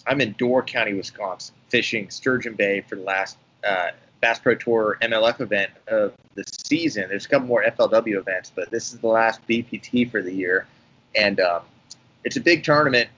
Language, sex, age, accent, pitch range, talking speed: English, male, 30-49, American, 110-130 Hz, 185 wpm